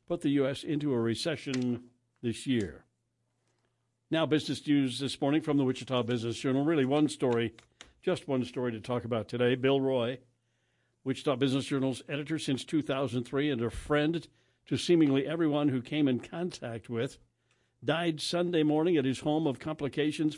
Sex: male